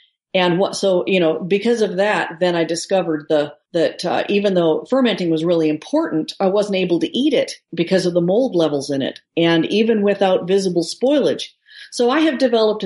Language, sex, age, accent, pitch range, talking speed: English, female, 50-69, American, 170-215 Hz, 195 wpm